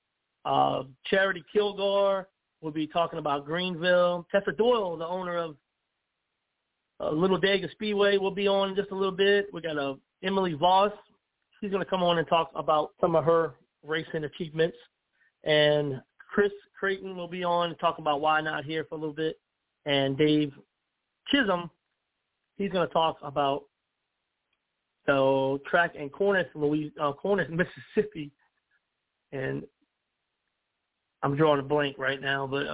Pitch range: 145-180 Hz